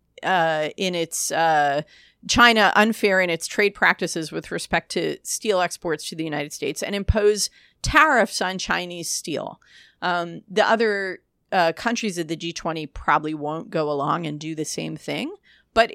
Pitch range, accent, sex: 165-210 Hz, American, female